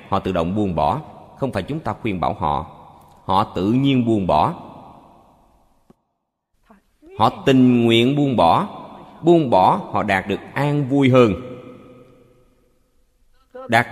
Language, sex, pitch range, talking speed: Vietnamese, male, 85-125 Hz, 135 wpm